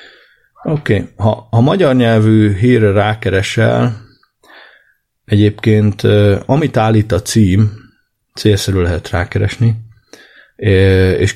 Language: Hungarian